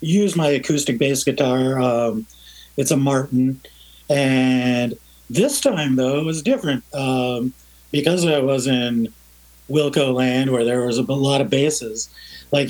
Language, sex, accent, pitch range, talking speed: English, male, American, 120-150 Hz, 145 wpm